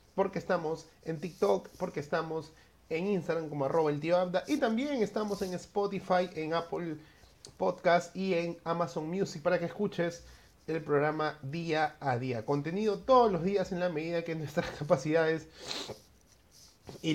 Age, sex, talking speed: 30-49, male, 155 wpm